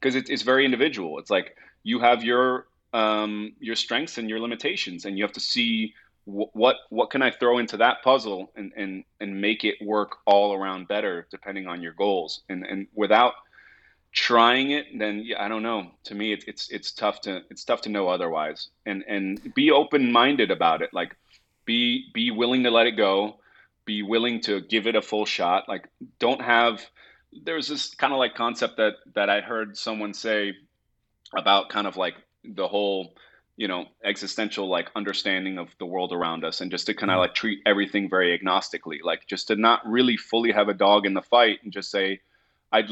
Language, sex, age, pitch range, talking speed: English, male, 30-49, 100-120 Hz, 205 wpm